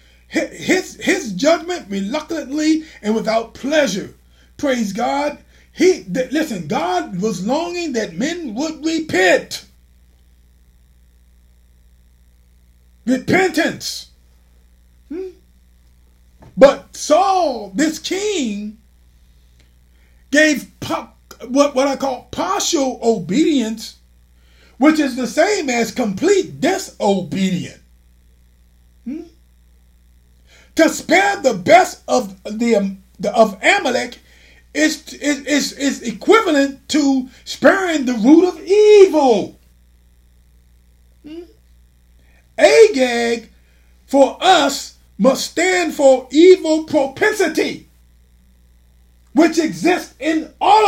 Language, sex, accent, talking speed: English, male, American, 85 wpm